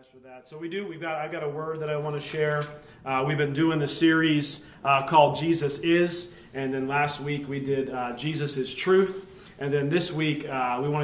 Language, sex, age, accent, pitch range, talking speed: English, male, 30-49, American, 140-170 Hz, 225 wpm